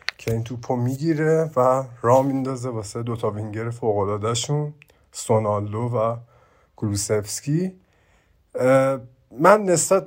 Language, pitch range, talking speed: Persian, 110-150 Hz, 105 wpm